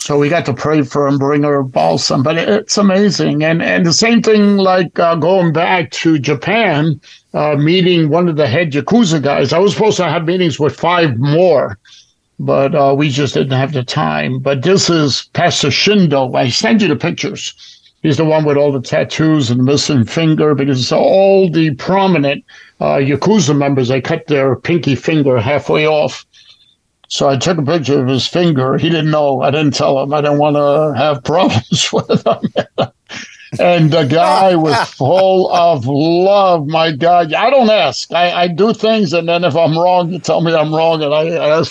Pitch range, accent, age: 140-170 Hz, American, 60-79